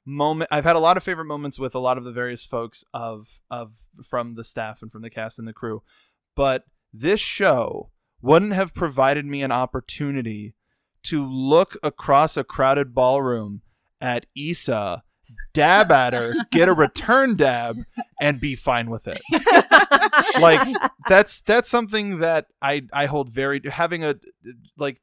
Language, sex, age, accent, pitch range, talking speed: English, male, 20-39, American, 120-150 Hz, 165 wpm